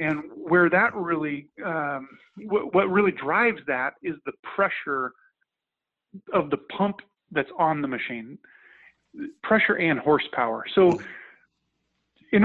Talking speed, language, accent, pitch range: 115 wpm, English, American, 150-205 Hz